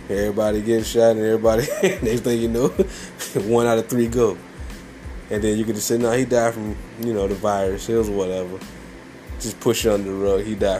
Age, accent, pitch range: 20-39, American, 95-110 Hz